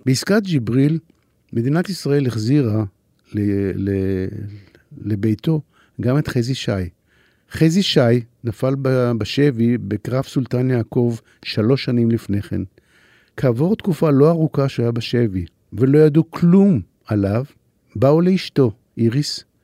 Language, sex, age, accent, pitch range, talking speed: Hebrew, male, 50-69, native, 110-145 Hz, 115 wpm